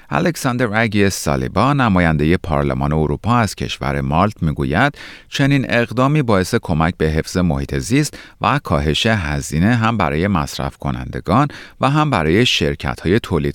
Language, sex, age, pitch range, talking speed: Persian, male, 40-59, 75-115 Hz, 135 wpm